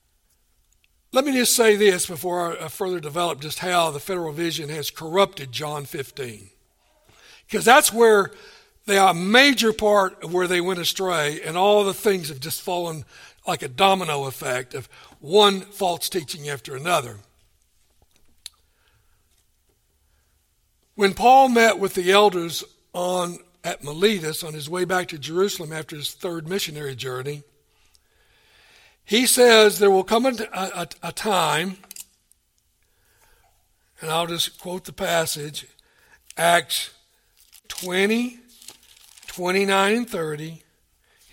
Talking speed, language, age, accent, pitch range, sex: 125 wpm, English, 60-79, American, 140-200 Hz, male